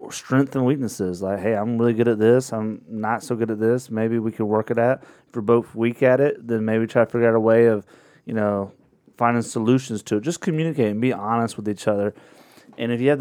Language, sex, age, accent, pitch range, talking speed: English, male, 30-49, American, 105-125 Hz, 250 wpm